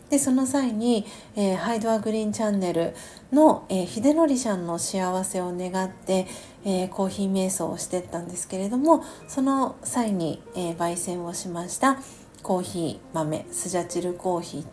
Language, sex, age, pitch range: Japanese, female, 40-59, 180-225 Hz